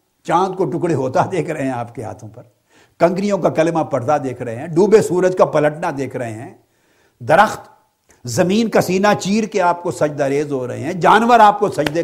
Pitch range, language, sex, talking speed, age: 150-210 Hz, Urdu, male, 210 wpm, 60-79